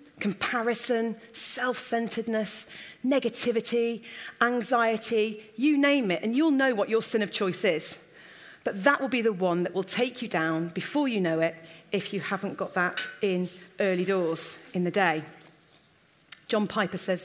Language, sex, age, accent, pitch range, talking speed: English, female, 40-59, British, 175-230 Hz, 155 wpm